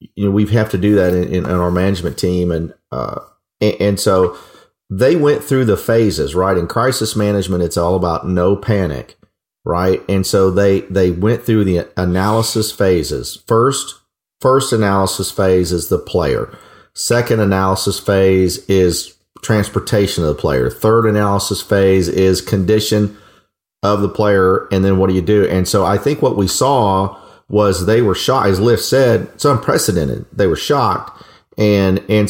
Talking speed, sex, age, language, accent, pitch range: 170 wpm, male, 40-59, English, American, 95-110 Hz